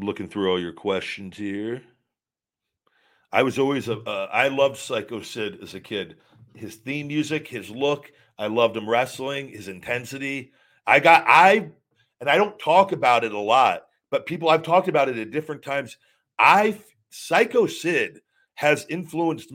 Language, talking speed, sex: English, 165 wpm, male